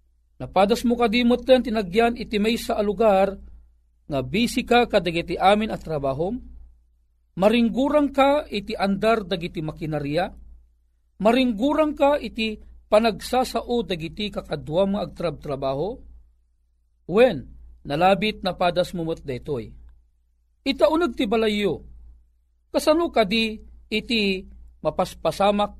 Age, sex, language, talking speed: 40-59, male, Filipino, 100 wpm